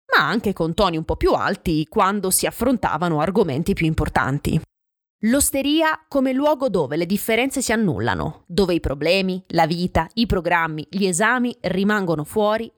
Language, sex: Italian, female